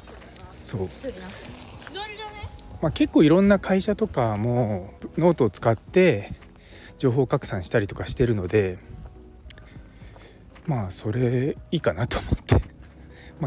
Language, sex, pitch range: Japanese, male, 95-130 Hz